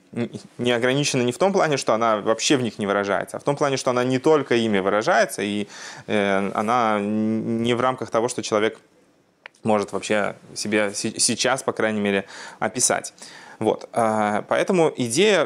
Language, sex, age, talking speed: Russian, male, 20-39, 165 wpm